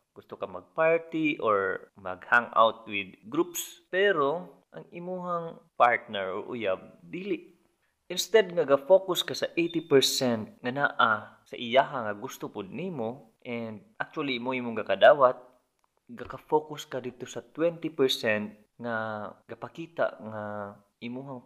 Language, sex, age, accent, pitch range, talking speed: English, male, 20-39, Filipino, 110-165 Hz, 120 wpm